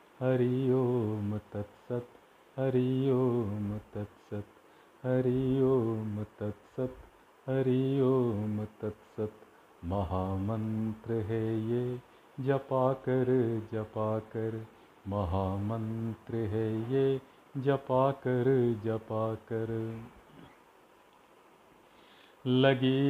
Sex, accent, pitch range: male, native, 110-135 Hz